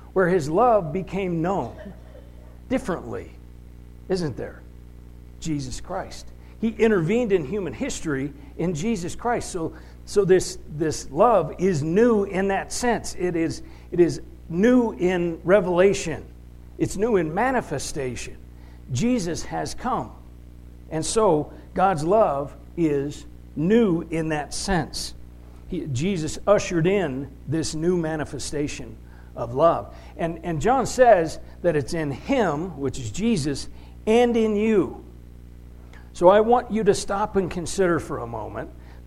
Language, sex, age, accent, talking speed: English, male, 60-79, American, 130 wpm